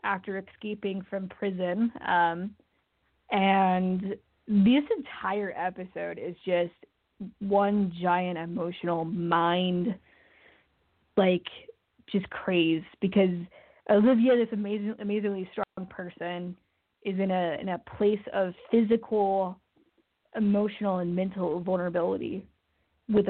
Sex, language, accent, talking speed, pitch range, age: female, English, American, 100 wpm, 185-205 Hz, 20-39